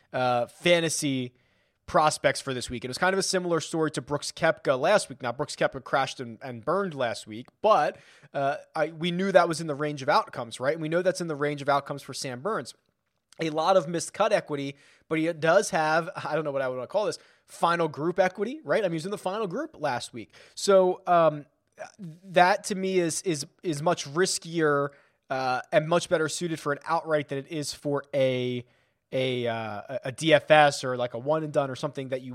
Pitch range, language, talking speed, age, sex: 140-175 Hz, English, 220 wpm, 20-39, male